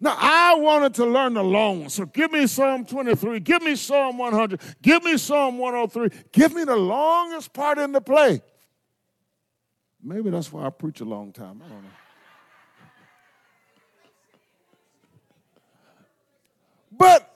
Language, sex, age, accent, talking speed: English, male, 50-69, American, 140 wpm